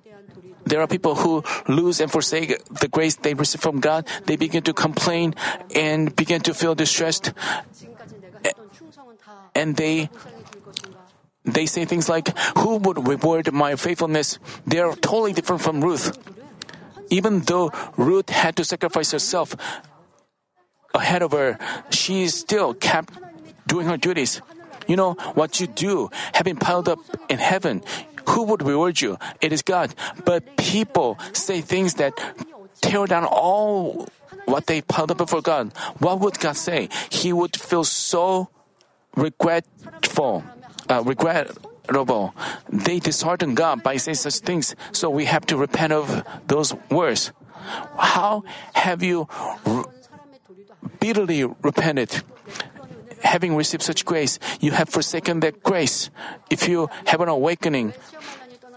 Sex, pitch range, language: male, 155-185 Hz, Korean